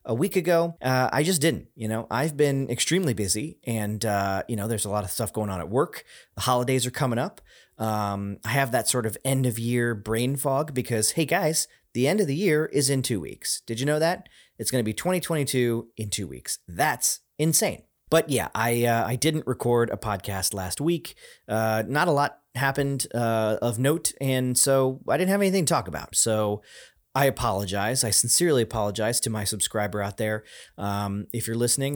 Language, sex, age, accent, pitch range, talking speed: English, male, 30-49, American, 110-145 Hz, 210 wpm